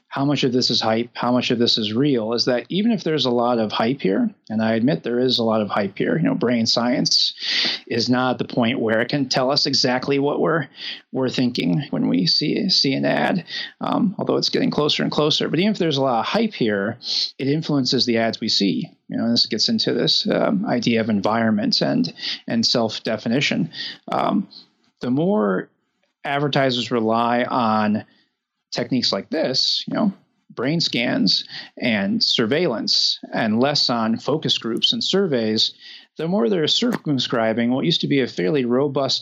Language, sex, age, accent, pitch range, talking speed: English, male, 30-49, American, 120-150 Hz, 190 wpm